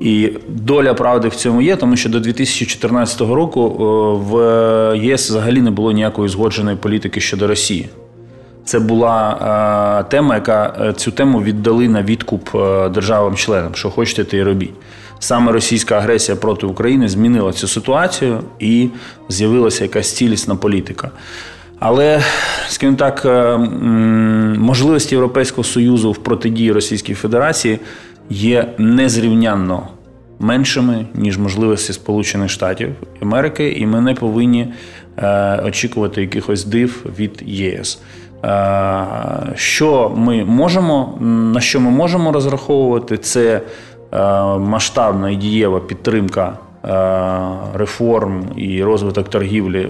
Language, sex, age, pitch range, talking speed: Ukrainian, male, 20-39, 100-120 Hz, 115 wpm